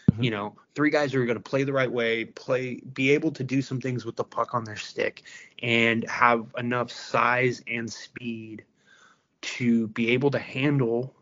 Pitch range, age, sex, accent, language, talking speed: 110-135 Hz, 20-39, male, American, English, 185 wpm